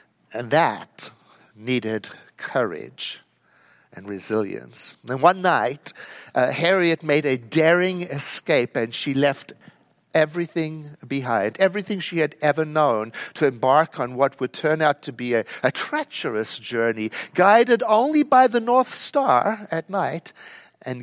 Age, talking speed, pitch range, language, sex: 60-79, 135 wpm, 125-175 Hz, English, male